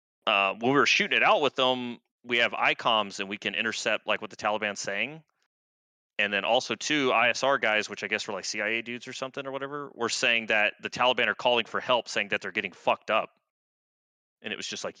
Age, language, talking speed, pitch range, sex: 30-49, English, 230 wpm, 95-125 Hz, male